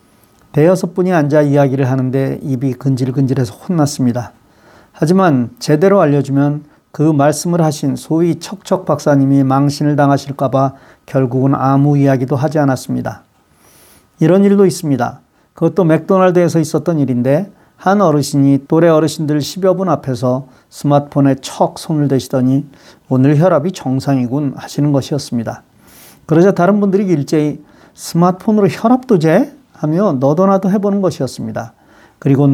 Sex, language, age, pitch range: male, Korean, 40-59, 135-180 Hz